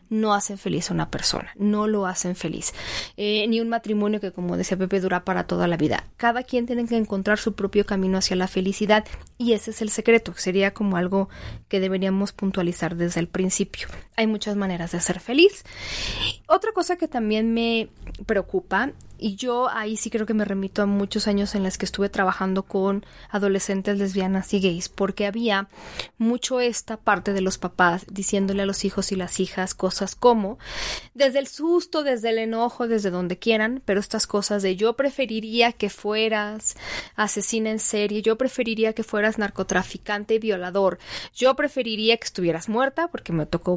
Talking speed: 180 wpm